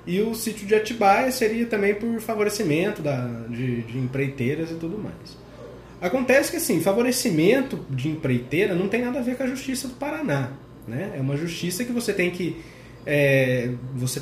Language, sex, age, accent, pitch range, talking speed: Portuguese, male, 20-39, Brazilian, 130-195 Hz, 165 wpm